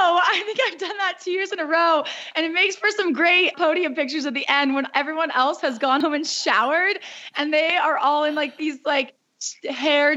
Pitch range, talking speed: 260-320 Hz, 225 wpm